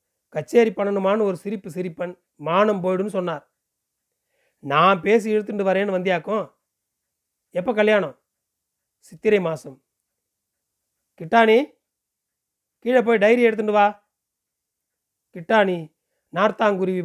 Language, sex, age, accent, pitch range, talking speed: Tamil, male, 40-59, native, 175-220 Hz, 90 wpm